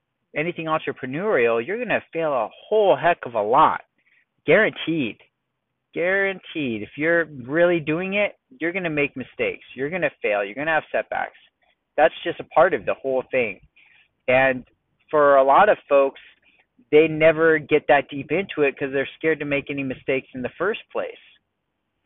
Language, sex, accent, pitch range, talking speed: English, male, American, 130-165 Hz, 175 wpm